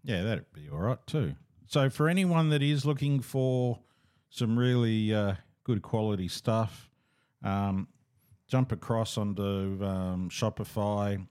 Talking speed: 135 wpm